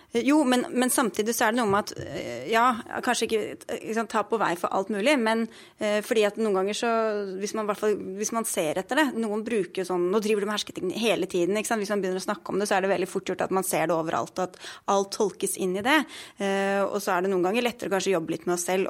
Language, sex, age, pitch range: English, female, 20-39, 185-230 Hz